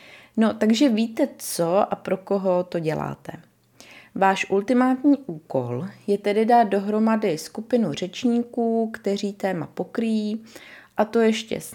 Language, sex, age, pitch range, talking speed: Czech, female, 30-49, 175-225 Hz, 130 wpm